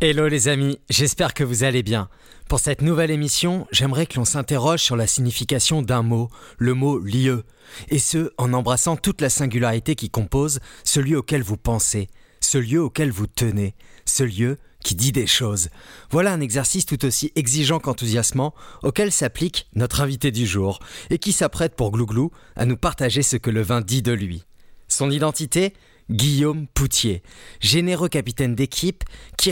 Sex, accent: male, French